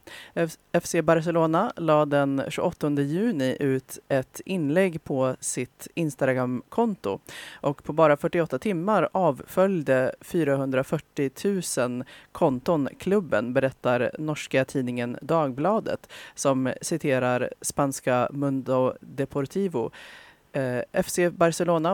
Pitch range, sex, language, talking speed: 130-160 Hz, female, Swedish, 95 wpm